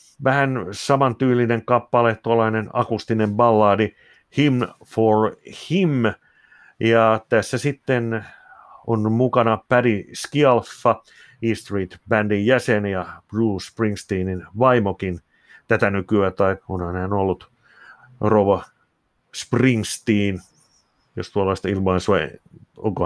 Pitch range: 95-115 Hz